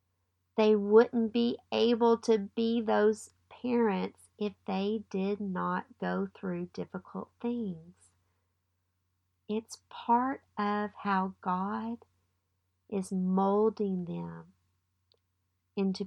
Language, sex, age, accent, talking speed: English, female, 50-69, American, 95 wpm